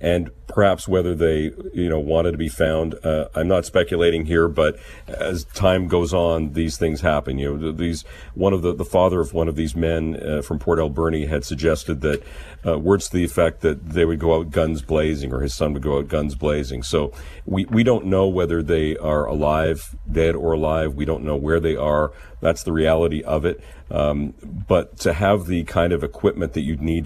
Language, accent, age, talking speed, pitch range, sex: English, American, 50-69, 215 wpm, 75-85 Hz, male